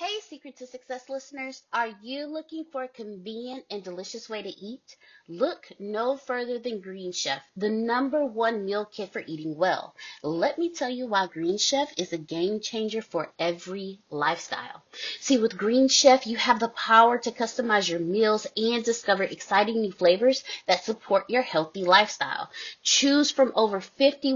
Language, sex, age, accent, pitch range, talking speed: English, female, 30-49, American, 200-255 Hz, 170 wpm